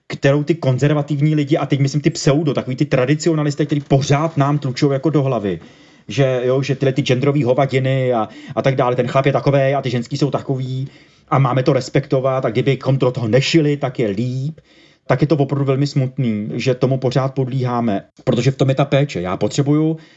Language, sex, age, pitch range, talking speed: Slovak, male, 30-49, 120-145 Hz, 205 wpm